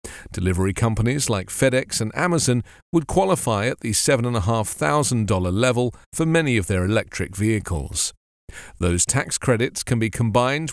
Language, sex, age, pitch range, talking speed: English, male, 40-59, 105-140 Hz, 135 wpm